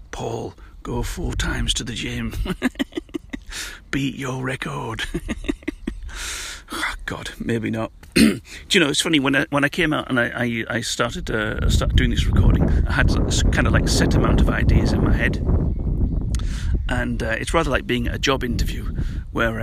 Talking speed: 180 wpm